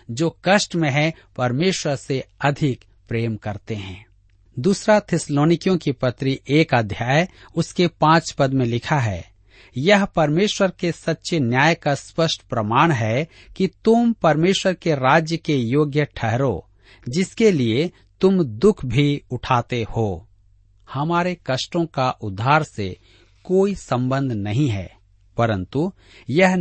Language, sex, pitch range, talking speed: Hindi, male, 110-170 Hz, 125 wpm